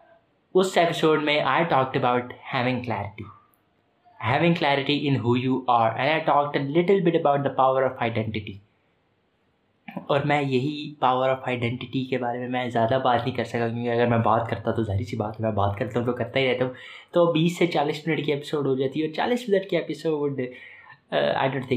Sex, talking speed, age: male, 170 wpm, 20-39